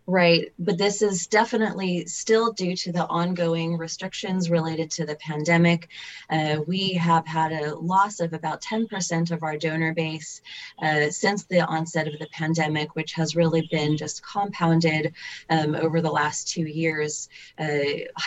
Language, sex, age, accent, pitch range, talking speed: English, female, 30-49, American, 155-175 Hz, 160 wpm